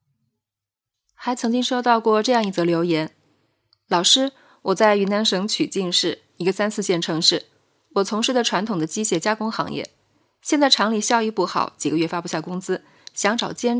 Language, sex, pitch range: Chinese, female, 160-235 Hz